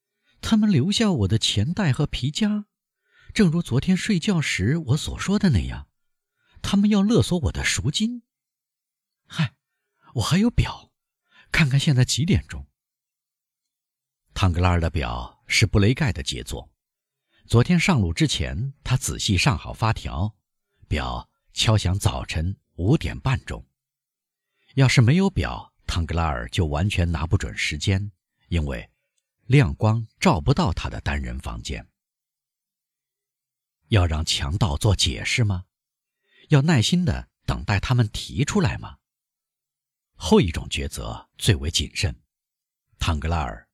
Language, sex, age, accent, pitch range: Chinese, male, 50-69, native, 85-140 Hz